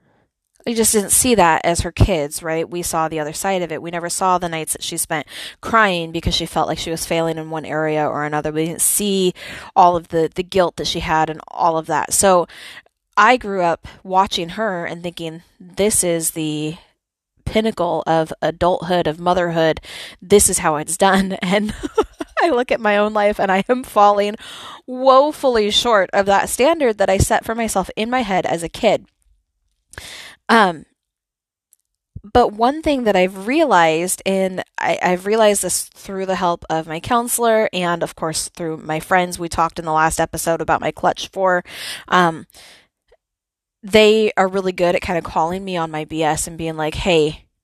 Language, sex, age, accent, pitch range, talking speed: English, female, 20-39, American, 160-195 Hz, 190 wpm